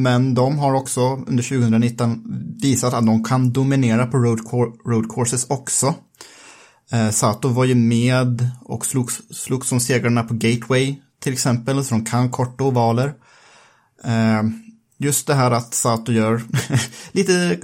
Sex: male